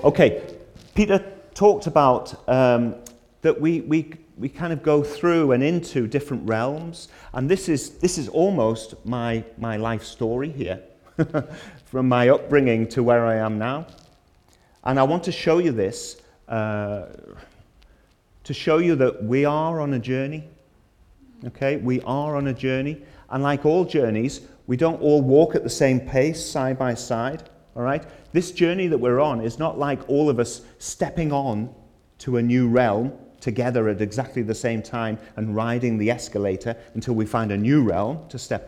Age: 40-59